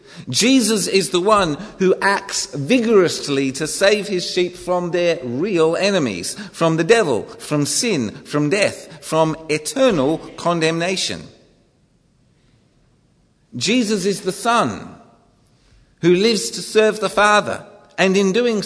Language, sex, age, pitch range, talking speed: English, male, 50-69, 135-200 Hz, 120 wpm